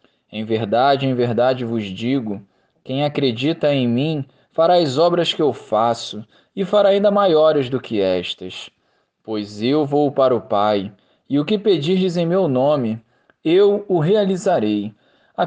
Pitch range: 120-170 Hz